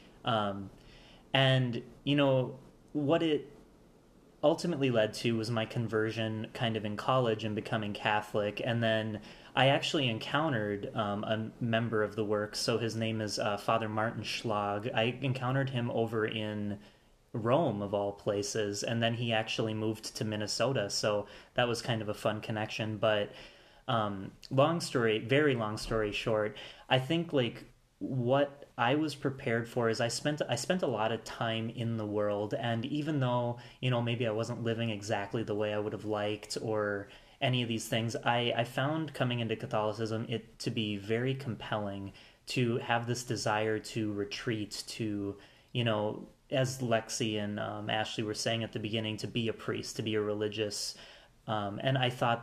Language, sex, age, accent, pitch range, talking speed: English, male, 30-49, American, 105-125 Hz, 175 wpm